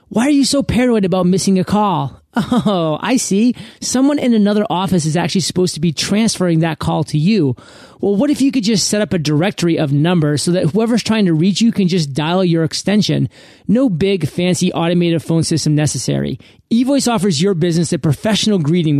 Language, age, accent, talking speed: English, 30-49, American, 200 wpm